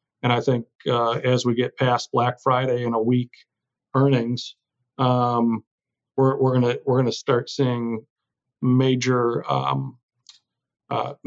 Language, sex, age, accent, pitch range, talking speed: English, male, 50-69, American, 115-130 Hz, 135 wpm